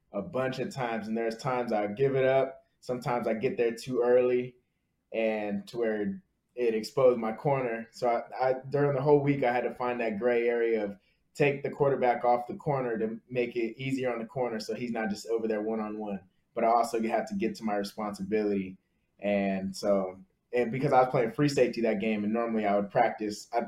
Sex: male